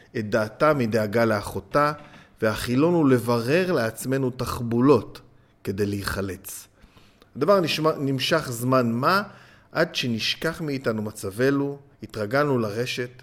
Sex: male